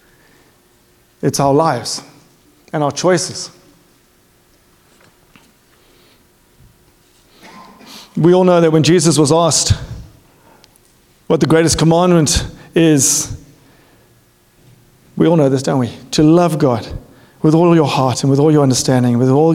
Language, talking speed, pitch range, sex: English, 120 wpm, 130-175 Hz, male